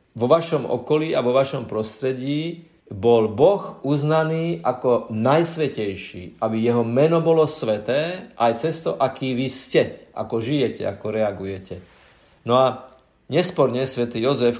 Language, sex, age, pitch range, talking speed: Slovak, male, 50-69, 110-145 Hz, 130 wpm